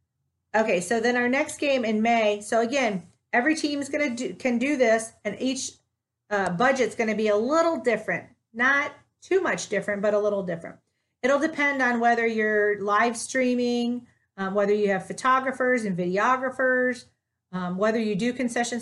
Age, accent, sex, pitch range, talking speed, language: 40-59, American, female, 195-250 Hz, 170 wpm, English